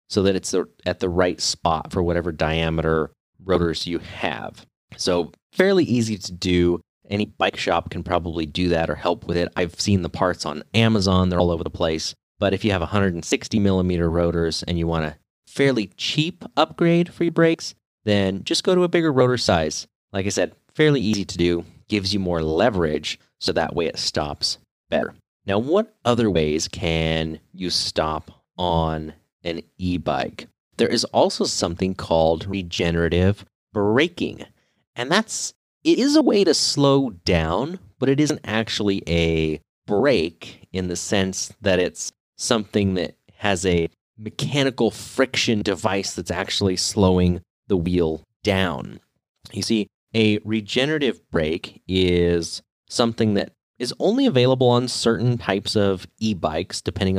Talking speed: 155 wpm